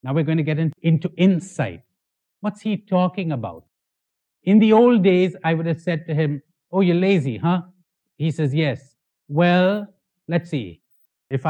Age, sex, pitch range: 60-79, male, 145-200 Hz